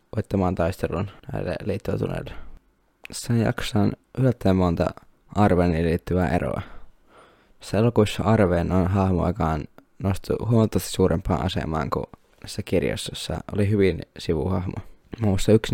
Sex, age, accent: male, 20-39, native